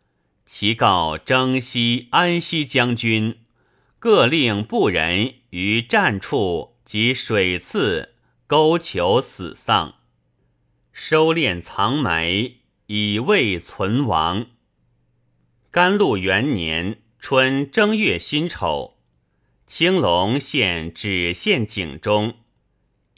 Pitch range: 85-130 Hz